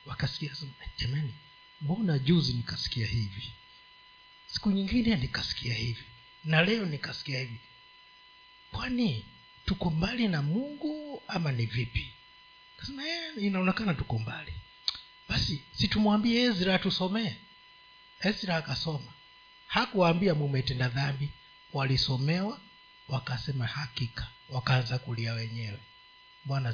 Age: 50-69